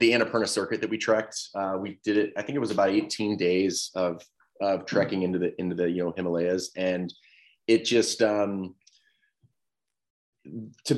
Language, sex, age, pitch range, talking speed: English, male, 30-49, 90-110 Hz, 175 wpm